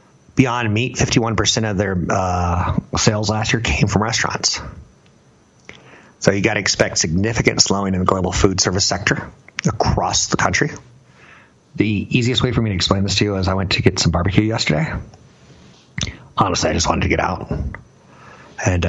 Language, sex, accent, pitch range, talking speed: English, male, American, 90-115 Hz, 170 wpm